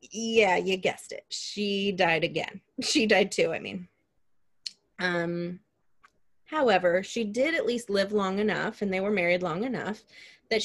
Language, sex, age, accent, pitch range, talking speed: English, female, 30-49, American, 165-210 Hz, 160 wpm